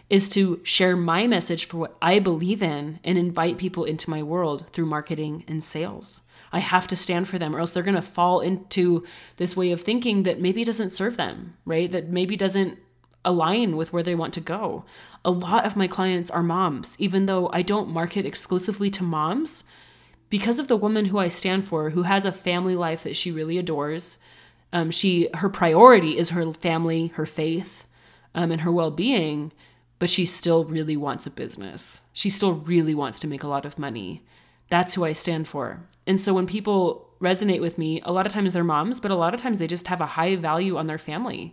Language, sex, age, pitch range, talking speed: English, female, 20-39, 165-190 Hz, 210 wpm